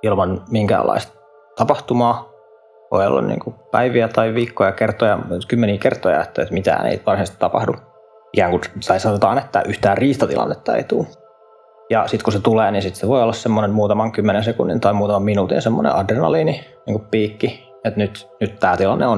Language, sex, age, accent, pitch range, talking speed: Finnish, male, 20-39, native, 100-115 Hz, 165 wpm